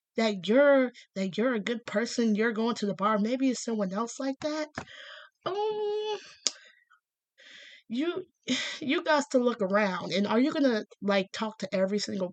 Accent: American